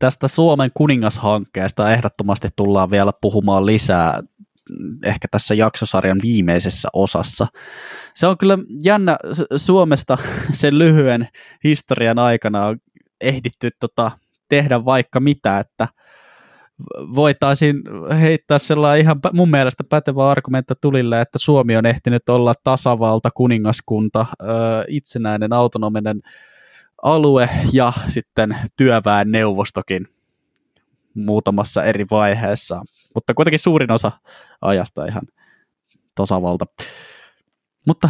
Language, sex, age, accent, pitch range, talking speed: Finnish, male, 20-39, native, 105-140 Hz, 100 wpm